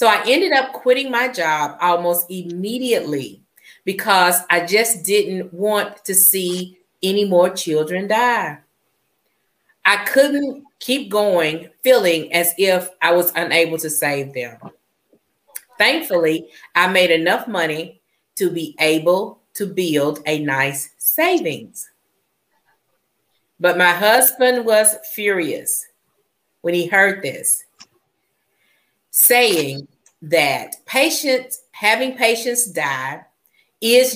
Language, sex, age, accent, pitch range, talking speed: English, female, 40-59, American, 160-215 Hz, 110 wpm